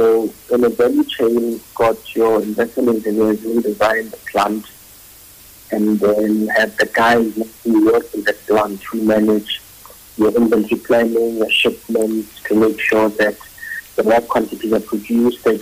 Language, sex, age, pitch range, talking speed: English, male, 50-69, 105-115 Hz, 165 wpm